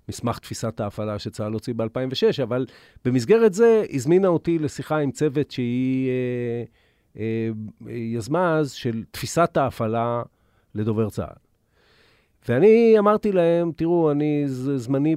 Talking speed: 115 wpm